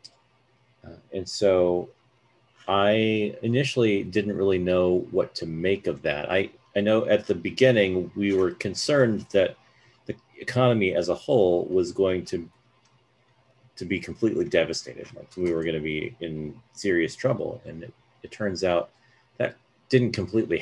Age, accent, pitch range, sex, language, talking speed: 30-49, American, 90-130 Hz, male, English, 150 wpm